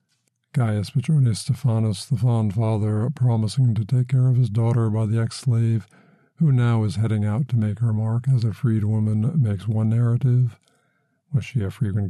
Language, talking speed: English, 180 wpm